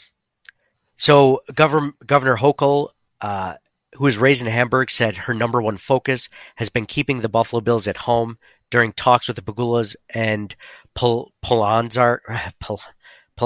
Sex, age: male, 40-59